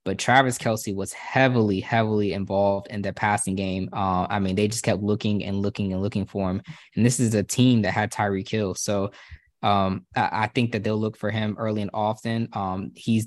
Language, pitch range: English, 100-115 Hz